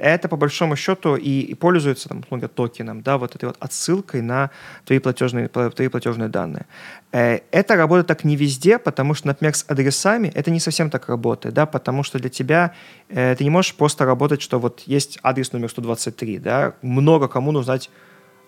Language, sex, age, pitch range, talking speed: Russian, male, 30-49, 125-160 Hz, 180 wpm